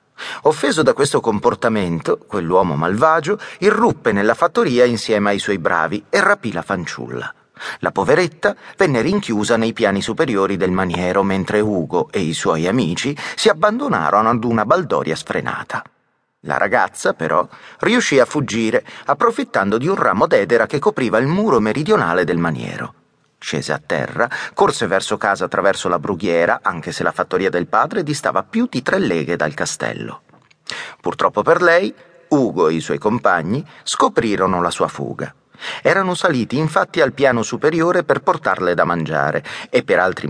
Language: Italian